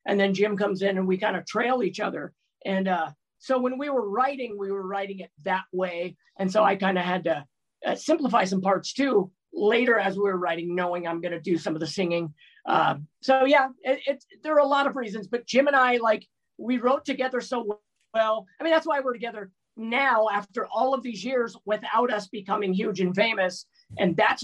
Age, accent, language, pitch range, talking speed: 40-59, American, English, 190-245 Hz, 220 wpm